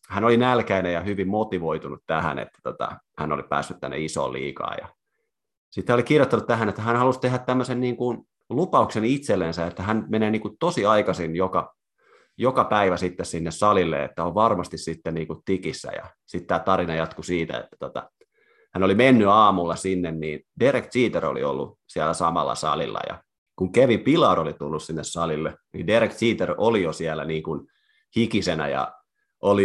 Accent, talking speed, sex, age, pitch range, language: native, 180 wpm, male, 30-49, 80-105 Hz, Finnish